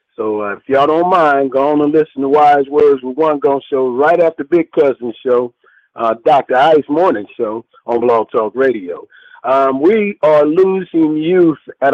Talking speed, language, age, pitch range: 185 wpm, English, 50-69, 125-170 Hz